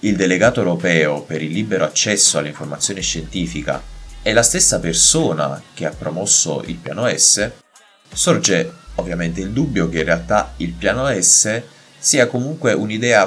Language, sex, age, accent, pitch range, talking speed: Italian, male, 30-49, native, 80-110 Hz, 145 wpm